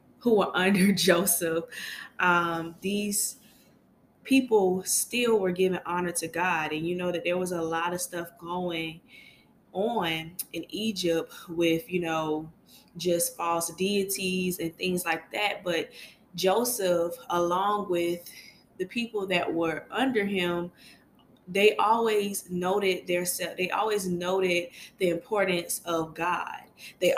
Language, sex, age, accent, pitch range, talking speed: English, female, 20-39, American, 170-195 Hz, 130 wpm